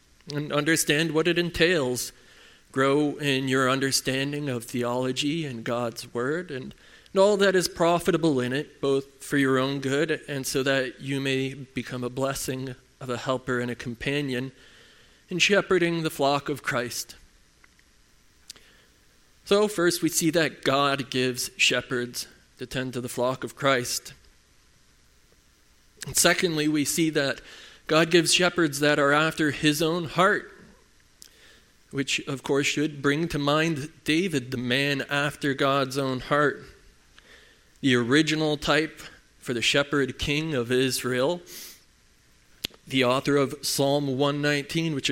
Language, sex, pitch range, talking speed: English, male, 130-155 Hz, 140 wpm